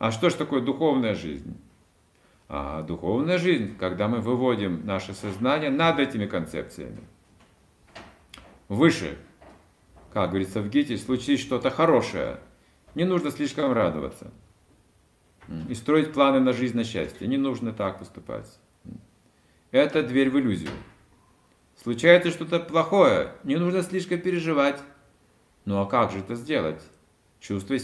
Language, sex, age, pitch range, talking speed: Russian, male, 50-69, 90-145 Hz, 125 wpm